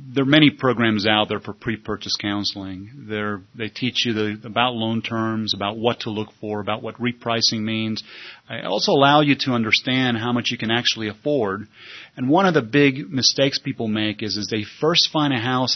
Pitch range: 105-135 Hz